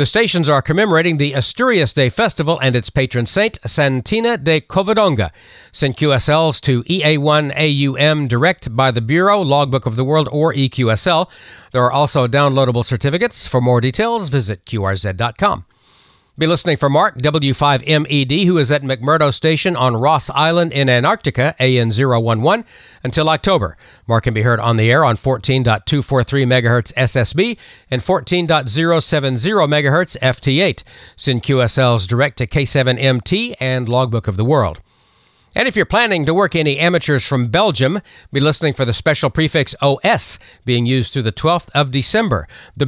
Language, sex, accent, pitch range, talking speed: English, male, American, 125-165 Hz, 145 wpm